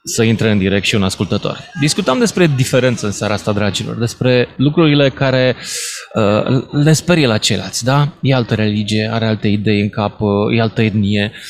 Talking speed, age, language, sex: 185 wpm, 20-39, Romanian, male